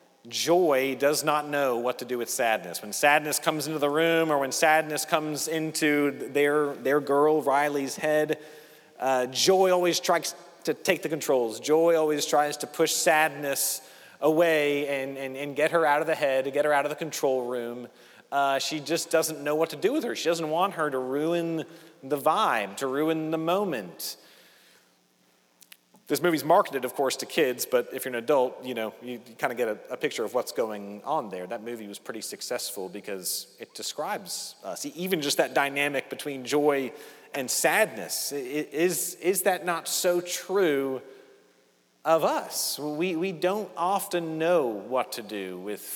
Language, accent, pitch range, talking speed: English, American, 125-160 Hz, 185 wpm